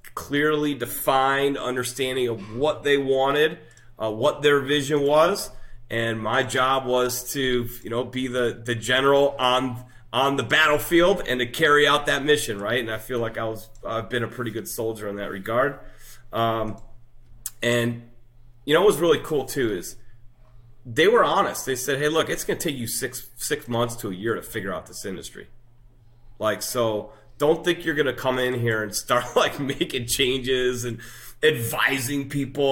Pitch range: 110-130 Hz